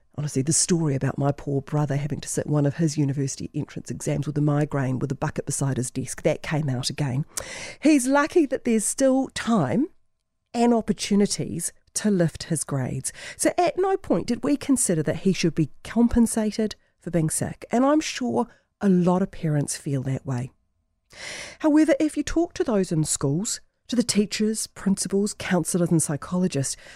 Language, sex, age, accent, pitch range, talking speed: English, female, 40-59, Australian, 150-215 Hz, 180 wpm